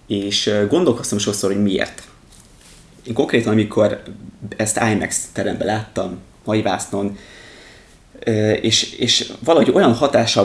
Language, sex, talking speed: Hungarian, male, 100 wpm